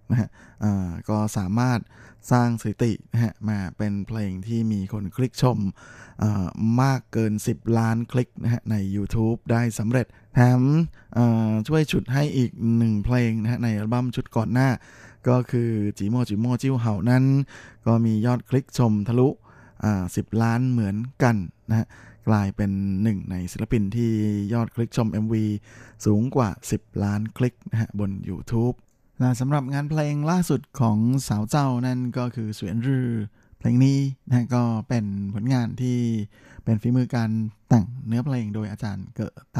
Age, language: 20-39, Thai